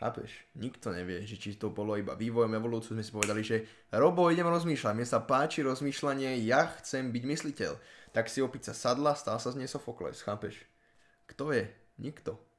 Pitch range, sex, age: 110-135 Hz, male, 10-29